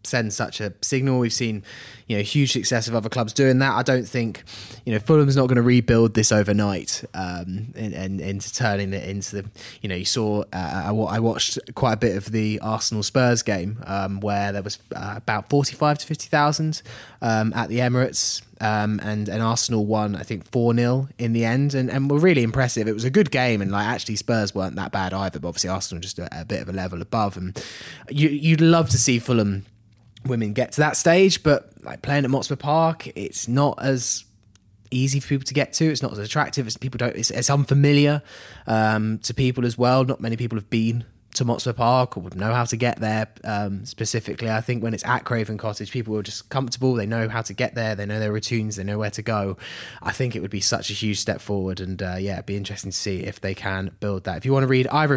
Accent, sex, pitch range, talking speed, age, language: British, male, 105-130 Hz, 235 wpm, 20-39, English